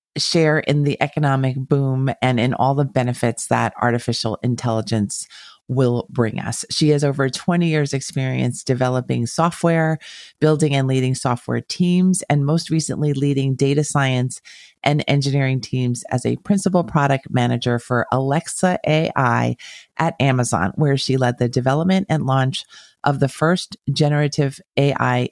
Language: English